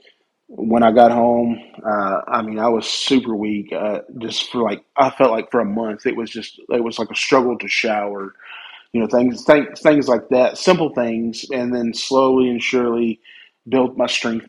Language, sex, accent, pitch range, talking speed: English, male, American, 105-120 Hz, 200 wpm